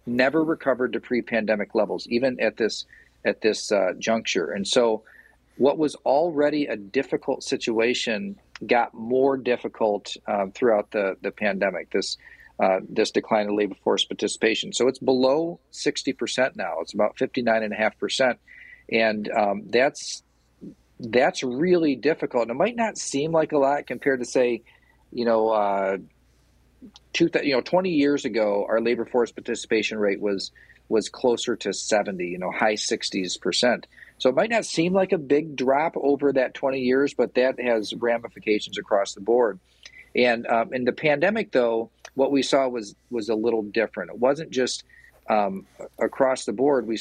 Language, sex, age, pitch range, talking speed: English, male, 40-59, 110-140 Hz, 165 wpm